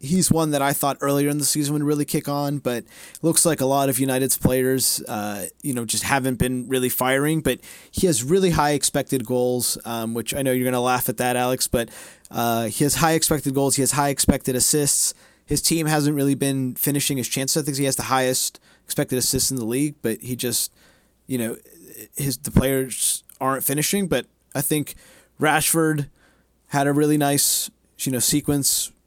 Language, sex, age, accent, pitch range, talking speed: English, male, 30-49, American, 120-145 Hz, 205 wpm